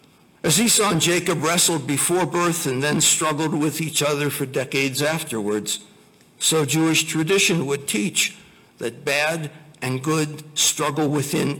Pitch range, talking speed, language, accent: 130-170 Hz, 140 wpm, English, American